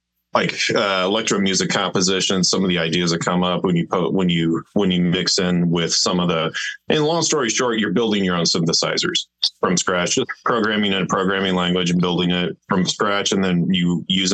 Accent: American